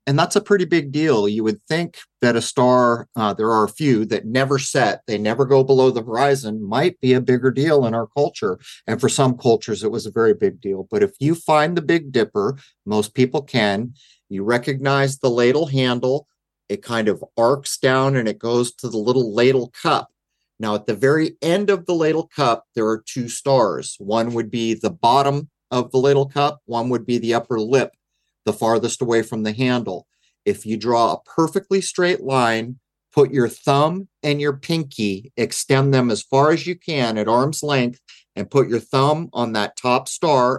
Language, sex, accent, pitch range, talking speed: English, male, American, 115-145 Hz, 205 wpm